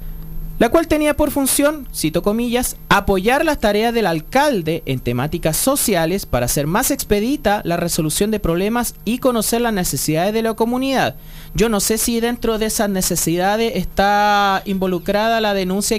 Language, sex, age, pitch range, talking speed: Spanish, male, 30-49, 180-245 Hz, 160 wpm